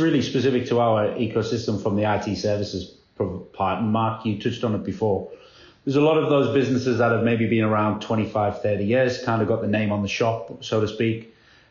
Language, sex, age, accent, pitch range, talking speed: English, male, 30-49, British, 110-130 Hz, 210 wpm